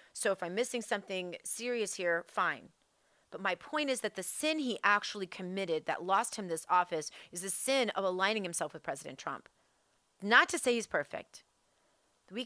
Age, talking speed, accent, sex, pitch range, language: 30-49, 185 wpm, American, female, 160-195 Hz, English